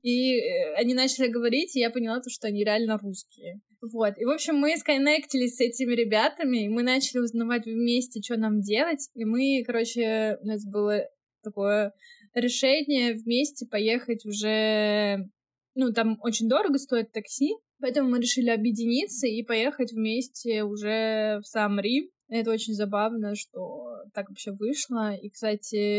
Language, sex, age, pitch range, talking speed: Russian, female, 20-39, 205-240 Hz, 150 wpm